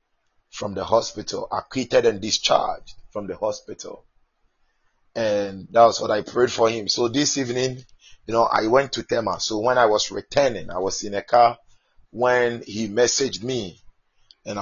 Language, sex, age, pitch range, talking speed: English, male, 30-49, 110-135 Hz, 170 wpm